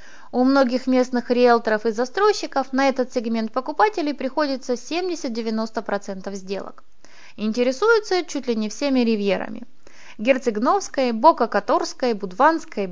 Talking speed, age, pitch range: 100 wpm, 20-39, 225-295 Hz